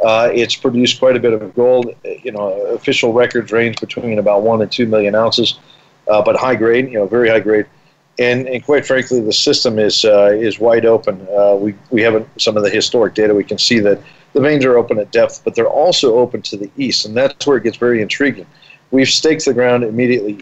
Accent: American